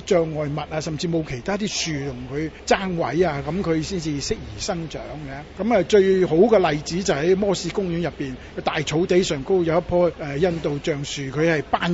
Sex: male